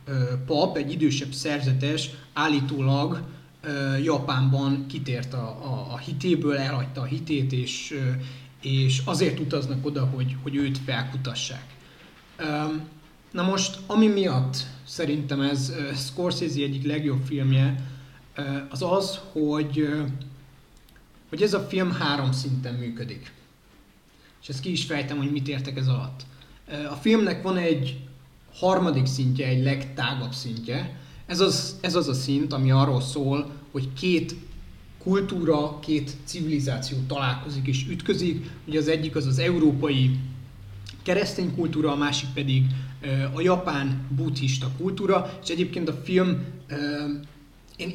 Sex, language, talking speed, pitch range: male, Hungarian, 125 wpm, 130-155 Hz